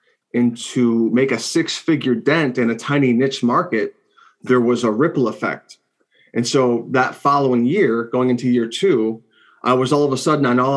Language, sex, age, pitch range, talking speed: English, male, 30-49, 120-145 Hz, 190 wpm